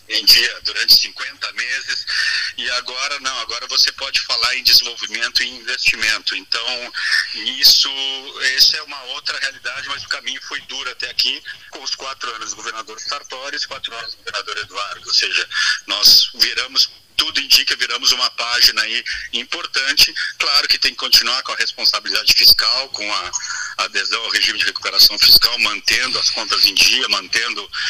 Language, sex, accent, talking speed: Portuguese, male, Brazilian, 165 wpm